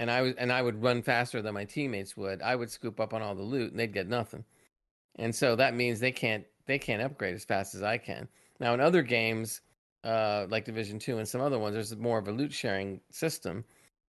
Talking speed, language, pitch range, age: 245 wpm, English, 105-130 Hz, 40-59